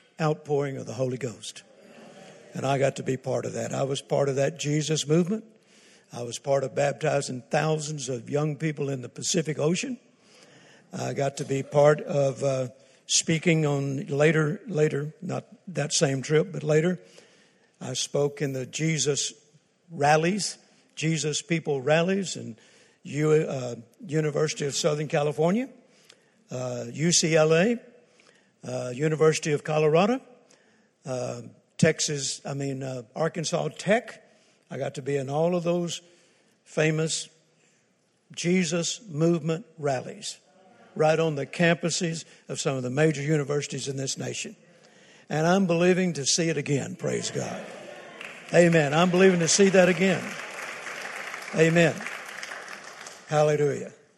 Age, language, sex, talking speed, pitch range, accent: 60-79, English, male, 135 wpm, 140-175 Hz, American